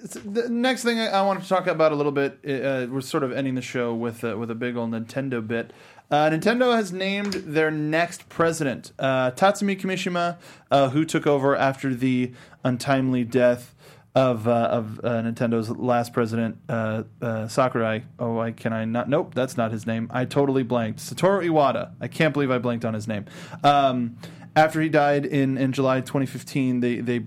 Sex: male